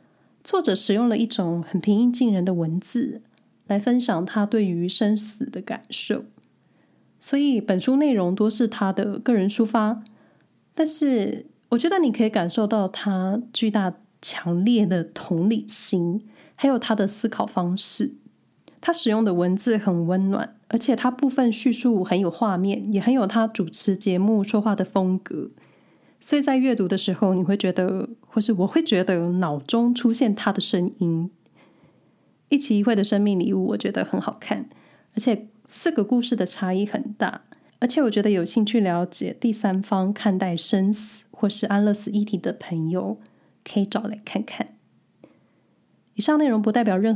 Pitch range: 190-230 Hz